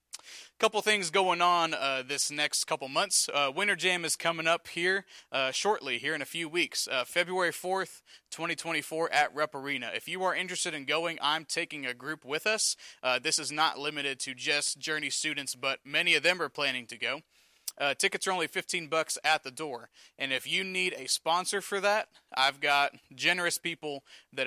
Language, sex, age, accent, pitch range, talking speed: English, male, 30-49, American, 130-165 Hz, 200 wpm